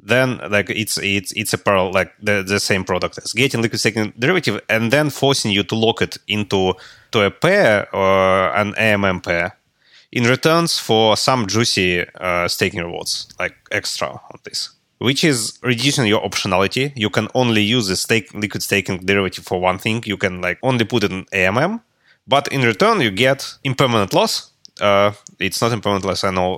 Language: English